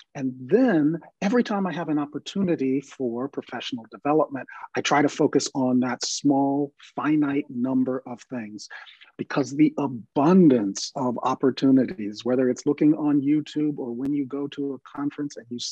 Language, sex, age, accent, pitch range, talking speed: English, male, 50-69, American, 130-155 Hz, 155 wpm